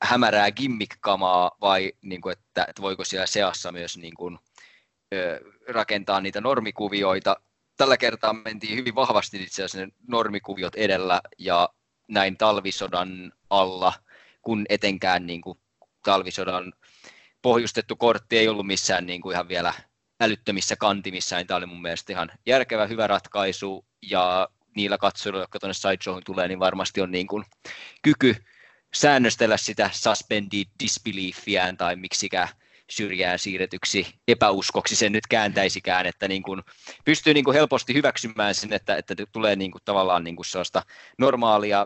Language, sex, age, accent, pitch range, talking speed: English, male, 20-39, Finnish, 90-110 Hz, 130 wpm